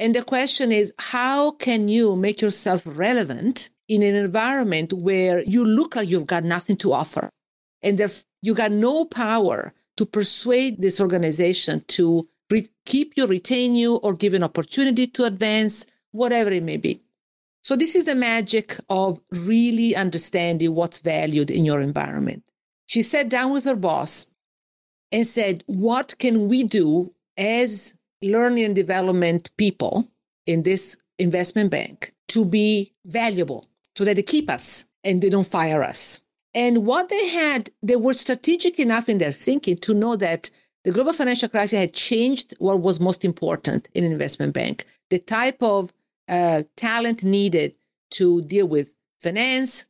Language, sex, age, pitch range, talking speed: English, female, 50-69, 185-240 Hz, 160 wpm